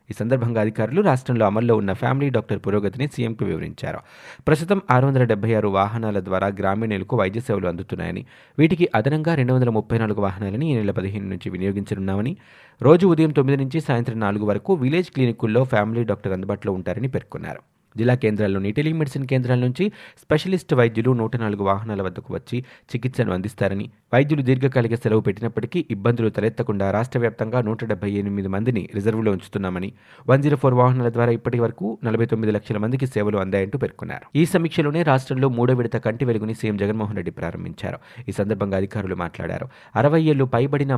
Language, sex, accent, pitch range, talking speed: Telugu, male, native, 100-130 Hz, 140 wpm